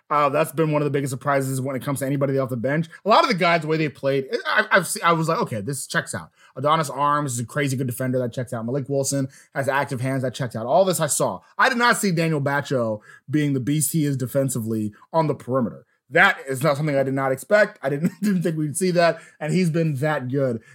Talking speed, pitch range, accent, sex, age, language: 265 wpm, 130-180 Hz, American, male, 20-39, English